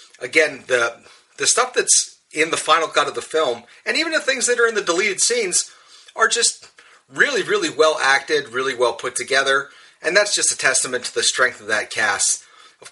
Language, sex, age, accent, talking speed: English, male, 30-49, American, 205 wpm